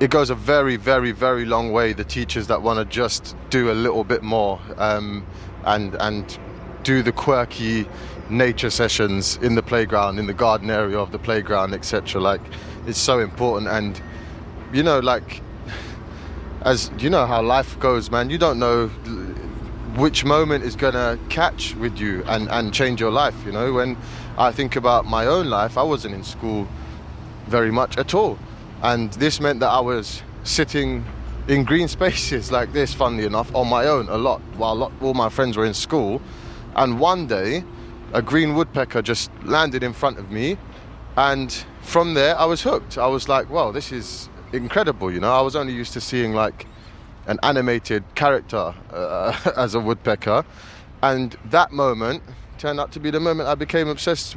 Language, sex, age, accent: English, male, 20-39, British